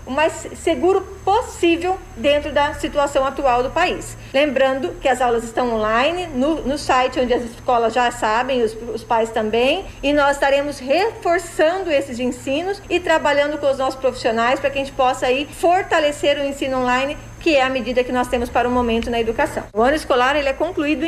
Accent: Brazilian